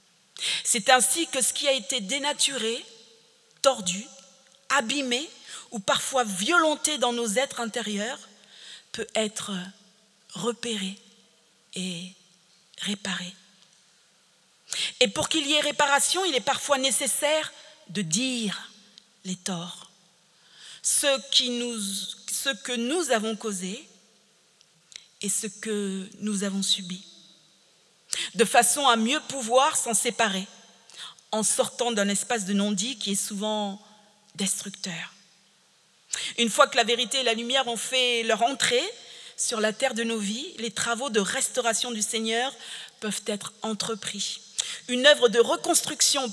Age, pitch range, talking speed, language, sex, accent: 40-59, 195-255 Hz, 125 wpm, French, female, French